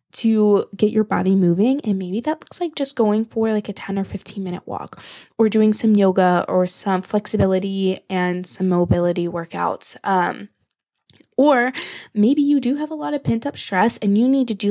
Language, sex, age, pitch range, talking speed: English, female, 10-29, 180-230 Hz, 195 wpm